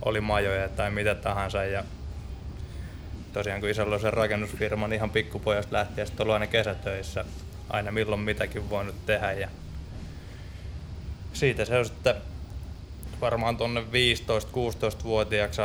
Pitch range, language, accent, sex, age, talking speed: 90-110 Hz, Finnish, native, male, 20-39, 110 wpm